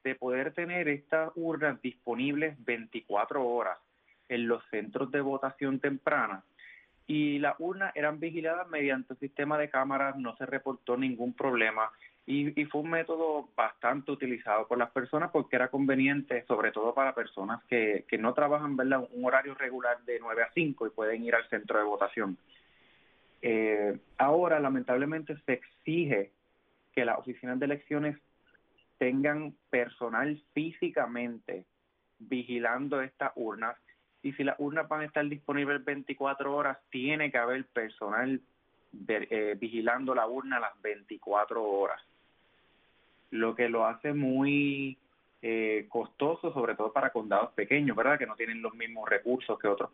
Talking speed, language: 150 wpm, English